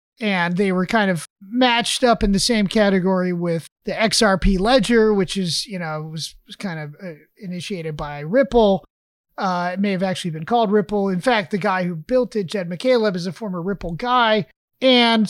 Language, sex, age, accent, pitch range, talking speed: English, male, 30-49, American, 185-230 Hz, 195 wpm